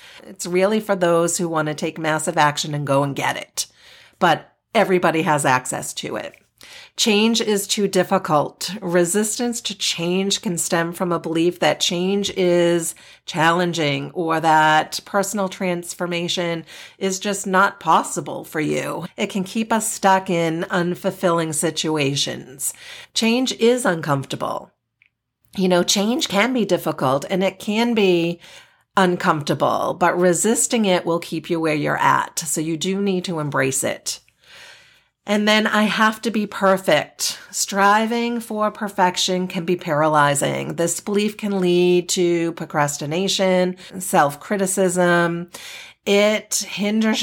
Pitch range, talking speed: 170-205 Hz, 135 wpm